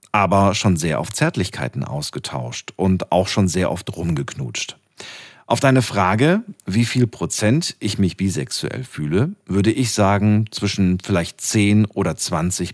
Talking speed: 140 wpm